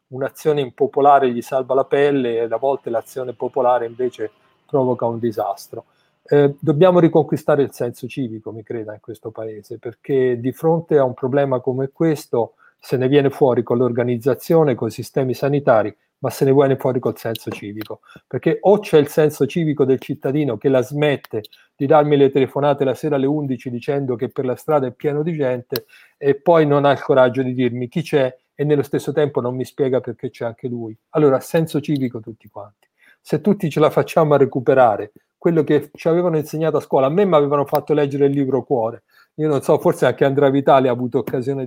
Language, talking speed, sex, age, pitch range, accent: Italian, 200 wpm, male, 40-59, 125-155 Hz, native